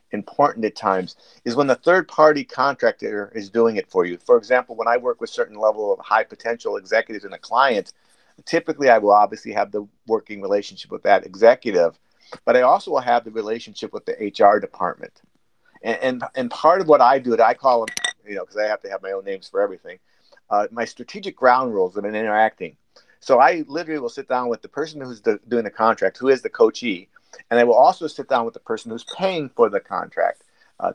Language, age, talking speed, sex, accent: English, 50-69, 220 wpm, male, American